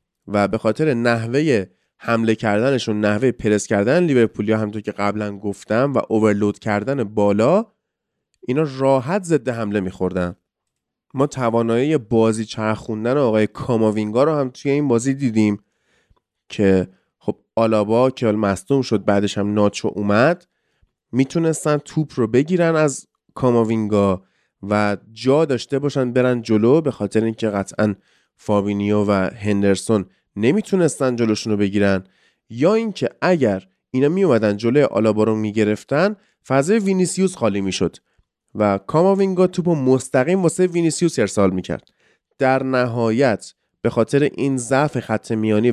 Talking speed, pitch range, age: 135 wpm, 105-140 Hz, 20-39